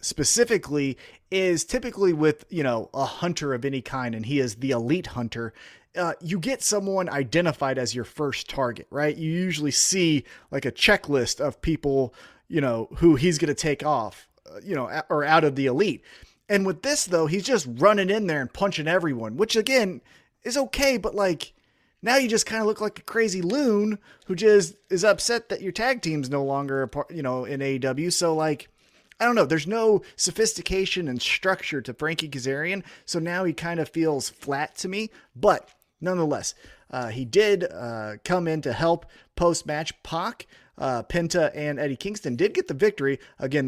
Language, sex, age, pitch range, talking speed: English, male, 30-49, 135-185 Hz, 190 wpm